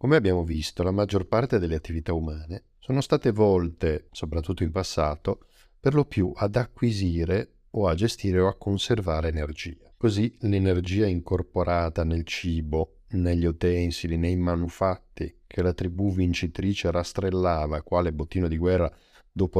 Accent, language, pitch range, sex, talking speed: native, Italian, 85-100 Hz, male, 140 wpm